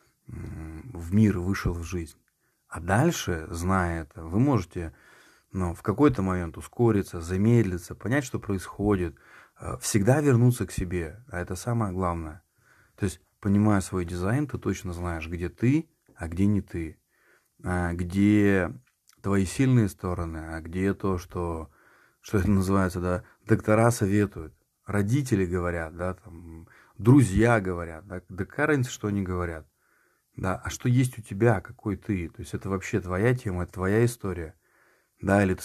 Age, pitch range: 30-49, 90-110 Hz